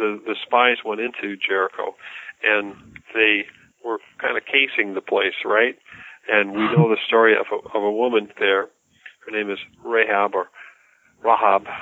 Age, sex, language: 50-69, male, English